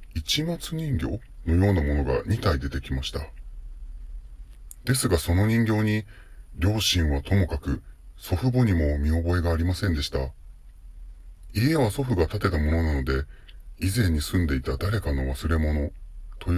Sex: female